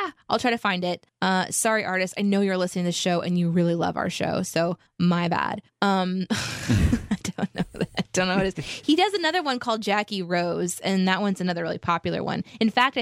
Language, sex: English, female